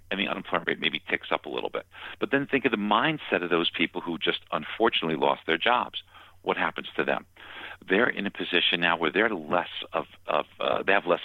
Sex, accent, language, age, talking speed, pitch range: male, American, English, 50-69, 230 wpm, 85-110 Hz